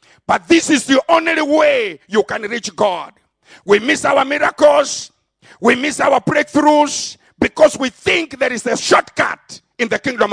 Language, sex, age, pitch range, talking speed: English, male, 50-69, 230-315 Hz, 165 wpm